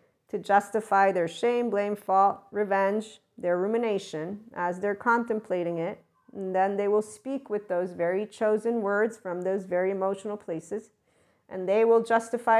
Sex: female